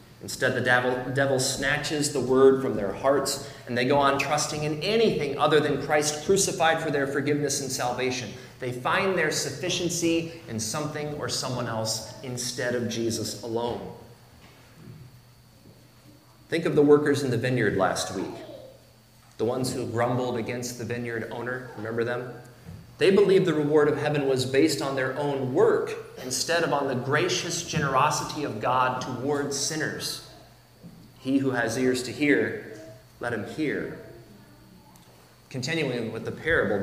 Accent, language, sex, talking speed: American, English, male, 150 wpm